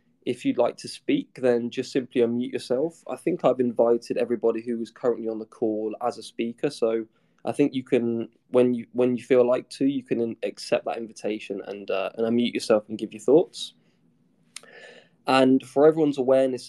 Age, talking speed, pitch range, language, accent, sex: 20-39, 195 wpm, 110-130 Hz, English, British, male